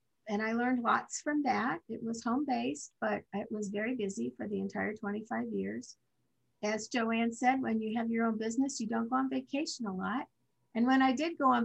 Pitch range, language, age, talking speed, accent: 200-240 Hz, English, 50-69, 210 wpm, American